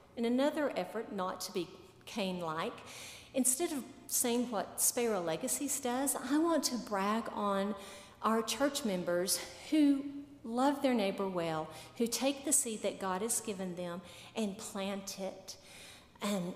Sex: female